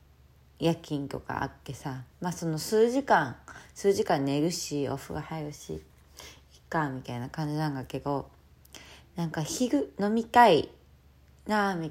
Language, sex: Japanese, female